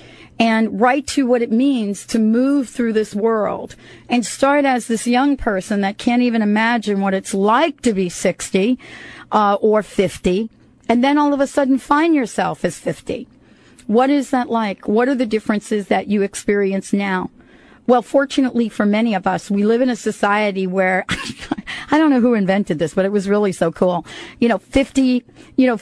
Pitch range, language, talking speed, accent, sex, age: 200-255 Hz, English, 190 wpm, American, female, 40-59